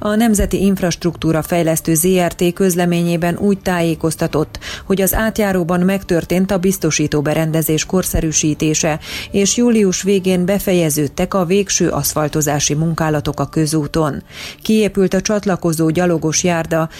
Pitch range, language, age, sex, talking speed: 150-185 Hz, Hungarian, 30-49, female, 110 wpm